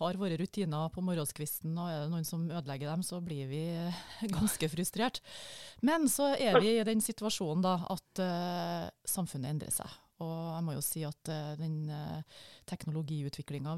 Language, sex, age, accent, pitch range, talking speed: English, female, 30-49, Swedish, 160-200 Hz, 175 wpm